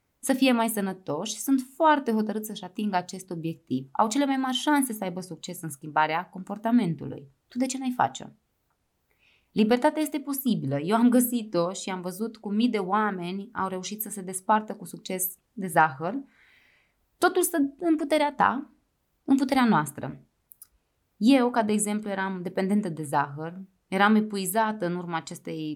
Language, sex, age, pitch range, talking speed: Romanian, female, 20-39, 165-240 Hz, 165 wpm